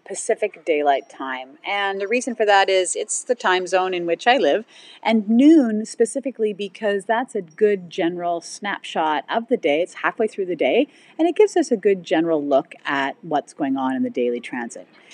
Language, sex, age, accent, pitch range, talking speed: English, female, 40-59, American, 165-225 Hz, 200 wpm